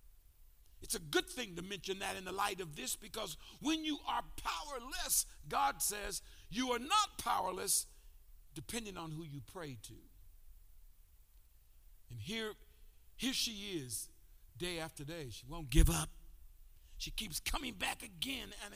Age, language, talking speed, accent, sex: 50-69, English, 150 wpm, American, male